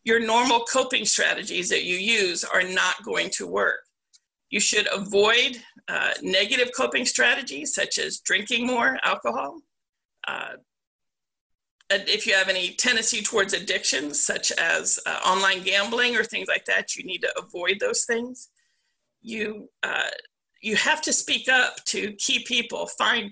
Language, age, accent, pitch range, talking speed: English, 50-69, American, 210-255 Hz, 150 wpm